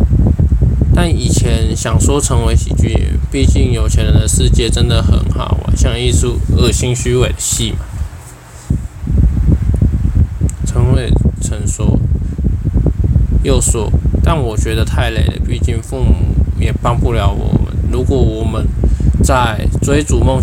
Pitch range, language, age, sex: 80-100 Hz, Chinese, 20-39, male